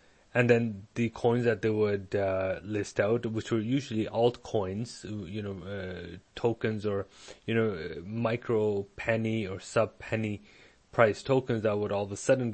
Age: 30-49